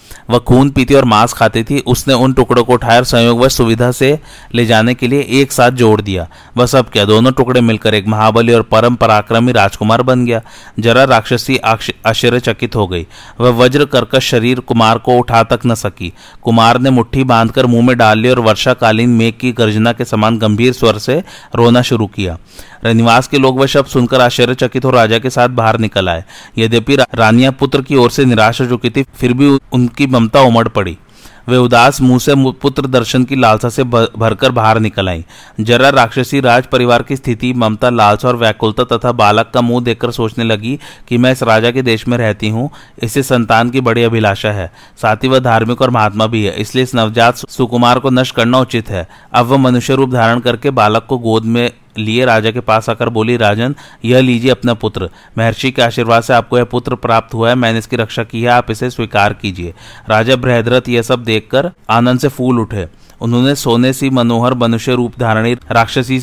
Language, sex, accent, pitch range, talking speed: Hindi, male, native, 115-130 Hz, 170 wpm